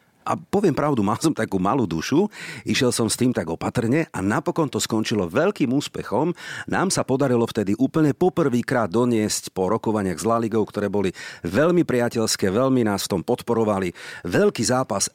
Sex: male